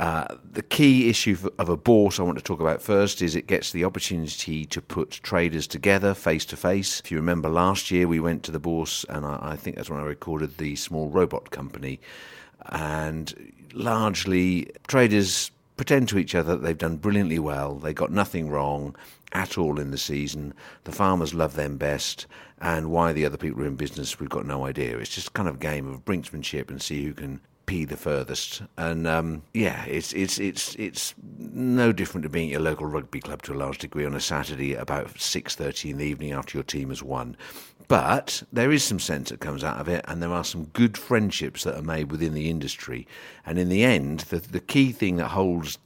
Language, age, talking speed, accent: English, 50-69, 215 wpm, British